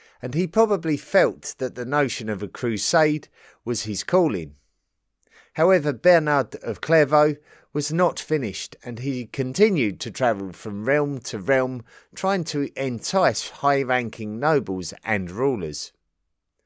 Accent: British